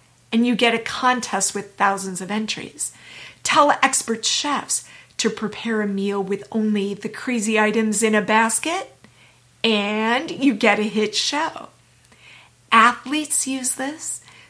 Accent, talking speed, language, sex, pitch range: American, 135 wpm, English, female, 195-260 Hz